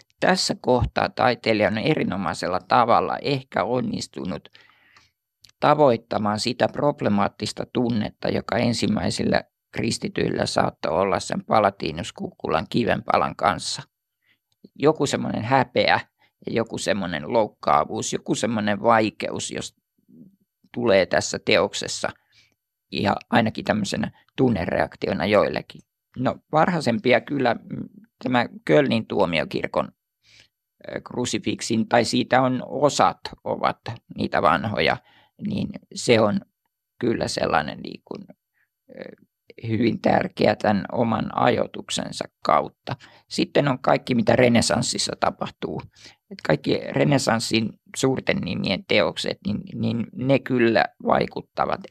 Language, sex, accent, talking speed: Finnish, male, native, 95 wpm